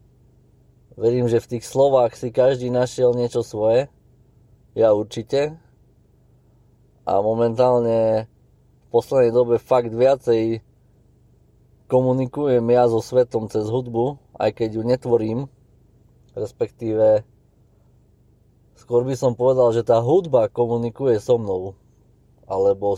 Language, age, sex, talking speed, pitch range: Slovak, 20-39, male, 105 wpm, 115-125 Hz